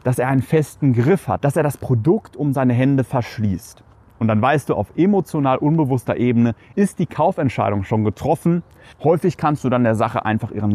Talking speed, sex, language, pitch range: 195 wpm, male, German, 115-155 Hz